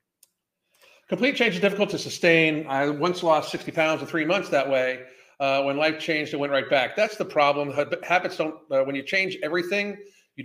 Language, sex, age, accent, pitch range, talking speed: English, male, 40-59, American, 130-165 Hz, 200 wpm